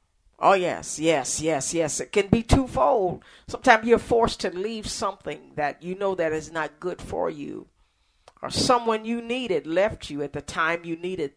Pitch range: 150-230 Hz